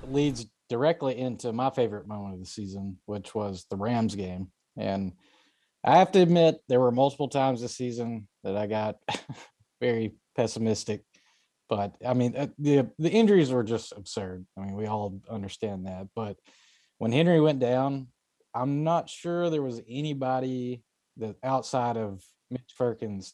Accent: American